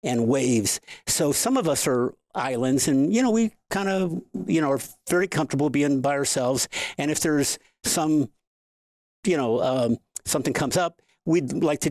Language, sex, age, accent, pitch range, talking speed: English, male, 50-69, American, 130-160 Hz, 175 wpm